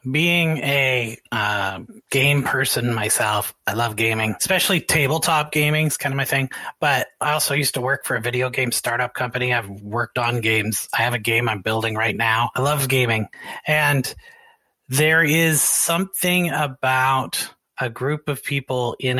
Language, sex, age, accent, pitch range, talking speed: English, male, 30-49, American, 120-150 Hz, 170 wpm